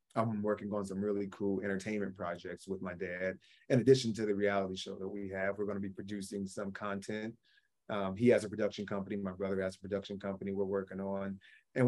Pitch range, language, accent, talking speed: 95-110 Hz, English, American, 210 wpm